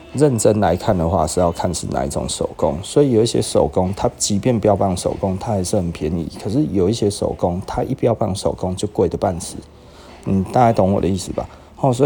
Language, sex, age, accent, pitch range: Chinese, male, 30-49, native, 90-110 Hz